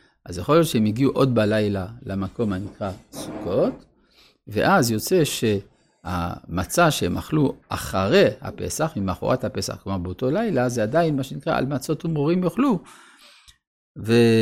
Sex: male